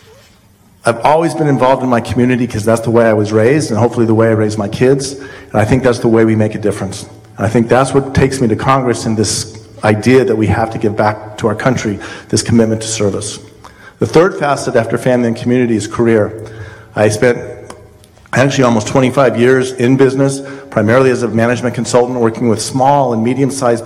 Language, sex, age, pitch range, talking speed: English, male, 50-69, 110-130 Hz, 215 wpm